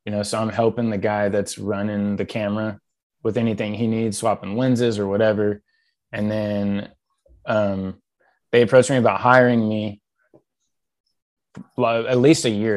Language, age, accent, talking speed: English, 20-39, American, 150 wpm